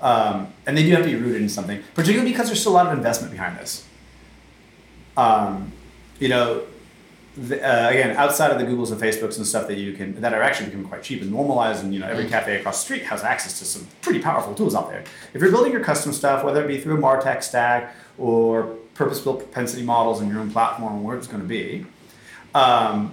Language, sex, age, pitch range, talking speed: English, male, 30-49, 105-135 Hz, 230 wpm